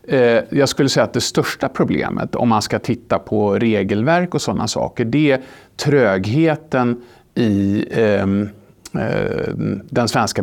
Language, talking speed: Swedish, 125 wpm